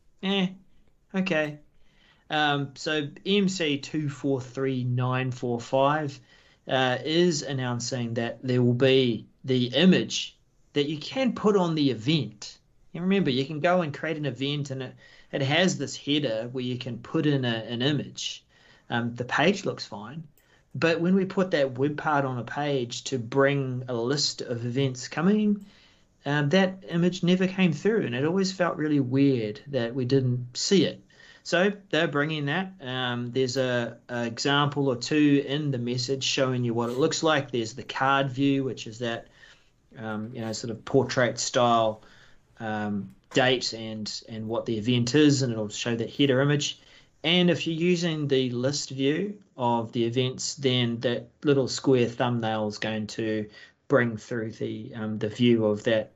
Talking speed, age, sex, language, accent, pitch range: 170 wpm, 30-49, male, English, Australian, 120-150 Hz